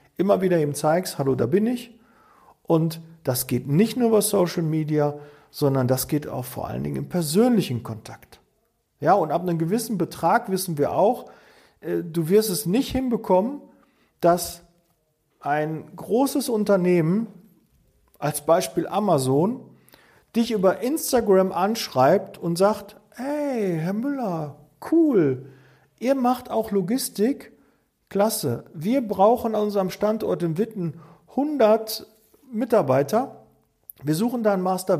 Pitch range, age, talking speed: 155-220 Hz, 40-59, 130 wpm